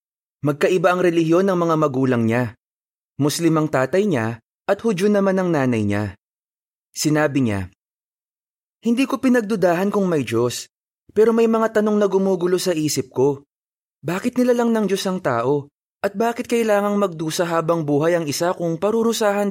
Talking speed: 155 wpm